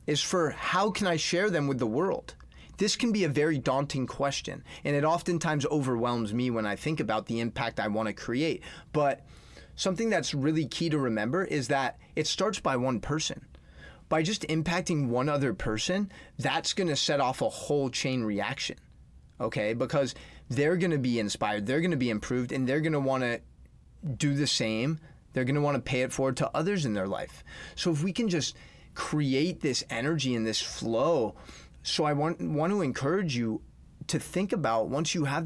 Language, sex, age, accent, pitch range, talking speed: English, male, 30-49, American, 120-160 Hz, 195 wpm